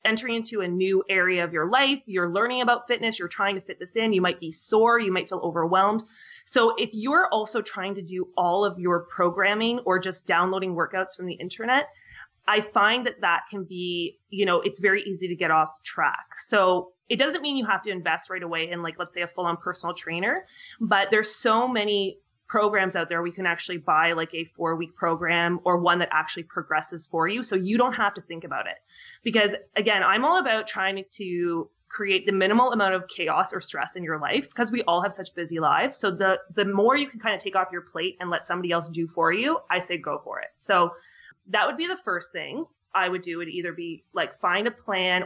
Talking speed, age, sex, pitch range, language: 230 wpm, 20-39, female, 175-215 Hz, English